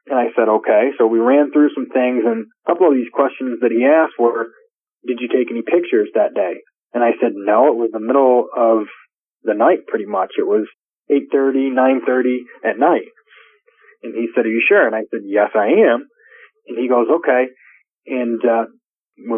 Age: 30-49